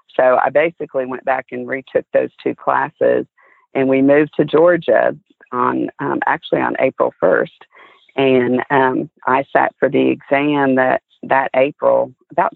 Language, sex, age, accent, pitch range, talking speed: English, female, 40-59, American, 125-140 Hz, 155 wpm